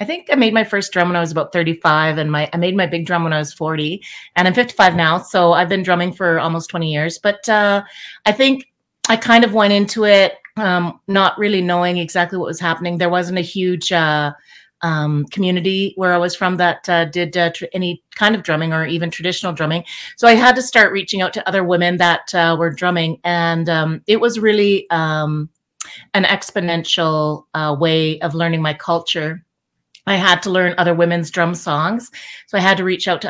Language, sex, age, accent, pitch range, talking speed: English, female, 30-49, American, 165-195 Hz, 215 wpm